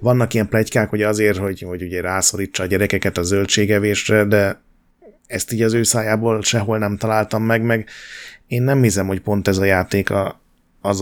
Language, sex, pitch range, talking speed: Hungarian, male, 95-115 Hz, 180 wpm